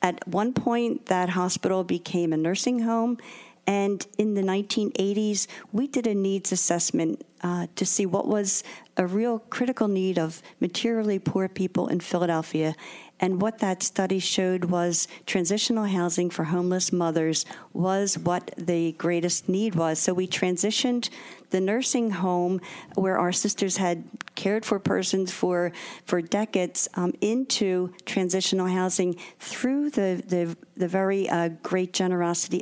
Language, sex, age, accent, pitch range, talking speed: English, female, 50-69, American, 175-200 Hz, 145 wpm